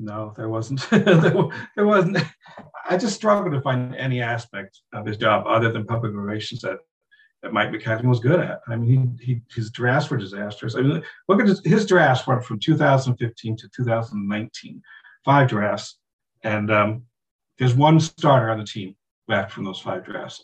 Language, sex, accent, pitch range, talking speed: English, male, American, 120-185 Hz, 175 wpm